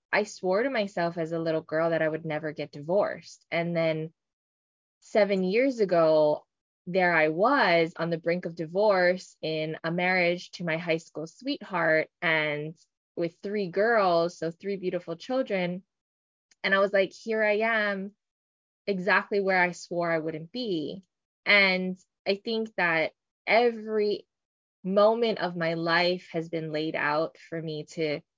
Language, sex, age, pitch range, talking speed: English, female, 20-39, 160-195 Hz, 155 wpm